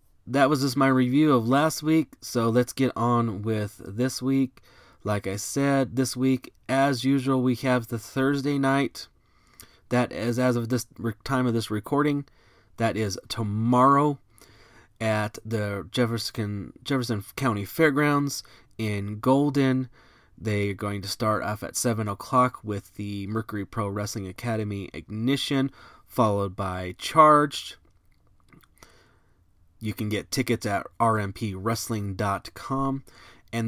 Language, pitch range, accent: English, 105-130 Hz, American